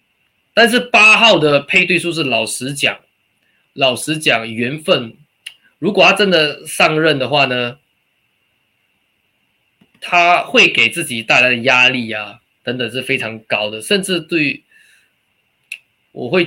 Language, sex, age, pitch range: Chinese, male, 20-39, 115-165 Hz